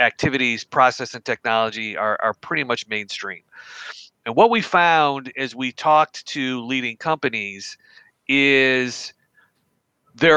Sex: male